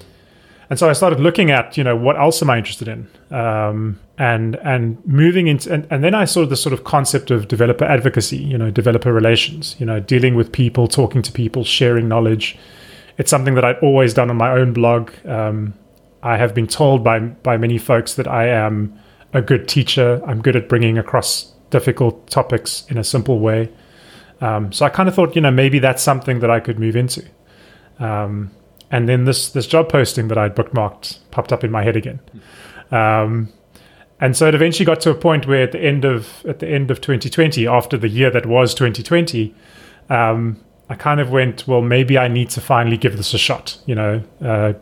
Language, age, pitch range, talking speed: English, 30-49, 110-135 Hz, 210 wpm